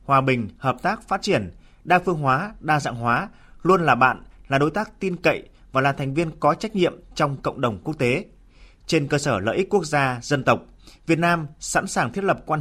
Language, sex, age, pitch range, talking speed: Vietnamese, male, 20-39, 130-175 Hz, 230 wpm